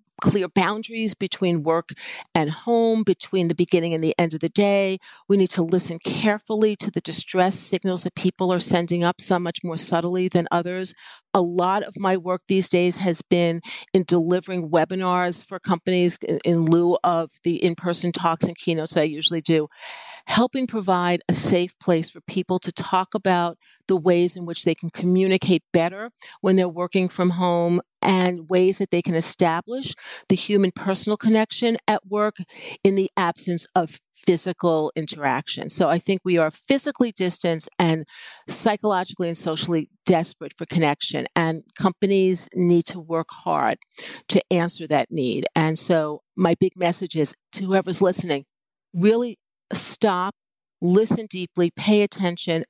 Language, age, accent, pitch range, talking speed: English, 40-59, American, 170-195 Hz, 160 wpm